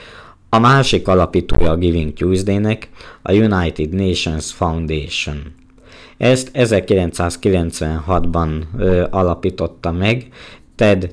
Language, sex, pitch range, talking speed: Hungarian, male, 85-100 Hz, 85 wpm